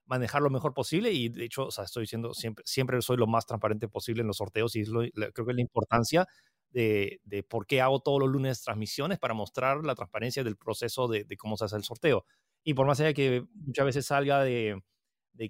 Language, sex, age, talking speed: Spanish, male, 30-49, 240 wpm